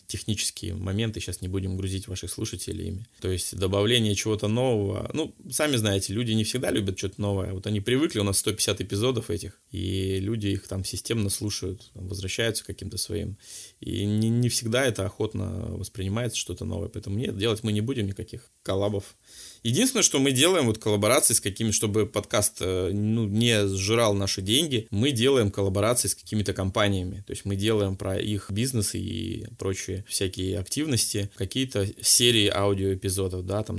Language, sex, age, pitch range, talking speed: Russian, male, 20-39, 100-115 Hz, 165 wpm